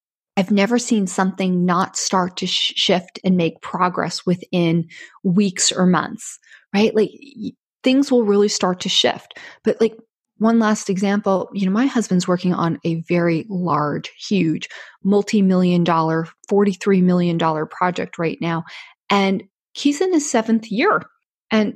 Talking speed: 150 wpm